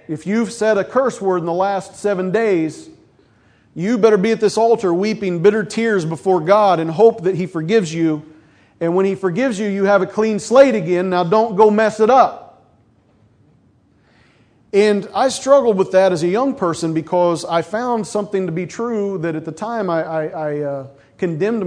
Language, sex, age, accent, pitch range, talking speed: English, male, 40-59, American, 155-215 Hz, 195 wpm